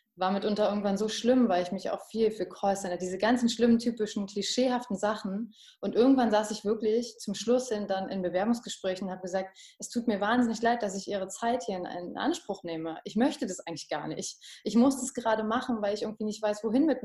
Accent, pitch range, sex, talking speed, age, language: German, 180-230 Hz, female, 230 wpm, 20-39, German